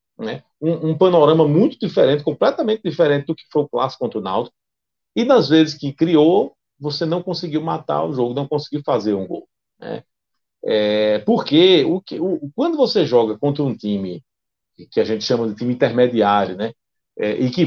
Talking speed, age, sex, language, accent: 185 wpm, 40-59, male, Portuguese, Brazilian